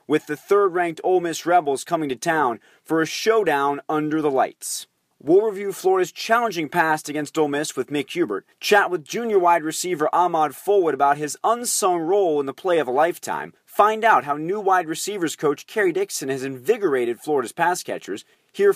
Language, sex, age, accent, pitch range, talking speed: English, male, 30-49, American, 145-210 Hz, 185 wpm